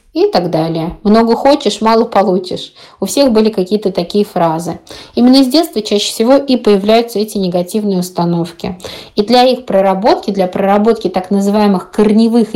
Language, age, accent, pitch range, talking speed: Russian, 20-39, native, 185-230 Hz, 155 wpm